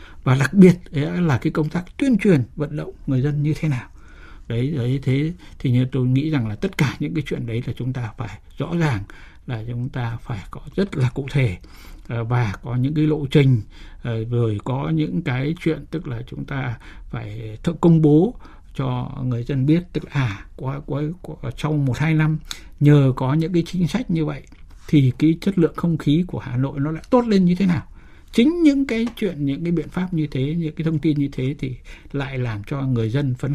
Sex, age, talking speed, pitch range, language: male, 60-79, 225 wpm, 120-155 Hz, Vietnamese